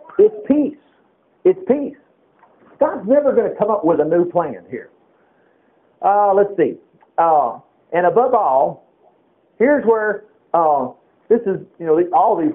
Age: 50-69